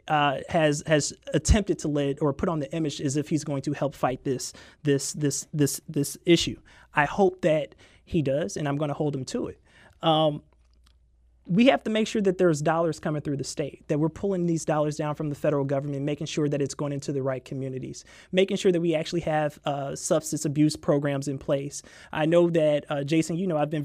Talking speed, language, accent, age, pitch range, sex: 225 wpm, English, American, 30-49, 145-170 Hz, male